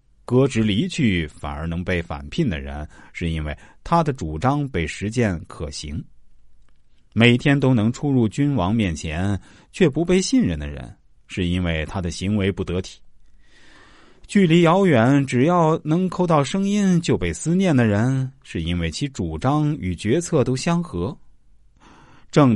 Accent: native